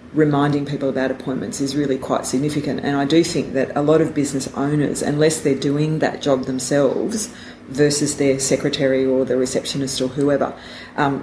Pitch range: 135-150 Hz